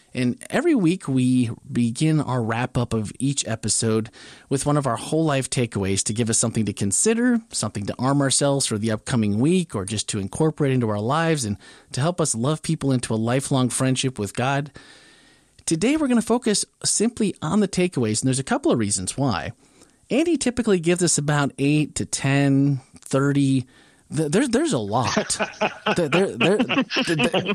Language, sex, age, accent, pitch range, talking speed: English, male, 30-49, American, 120-190 Hz, 180 wpm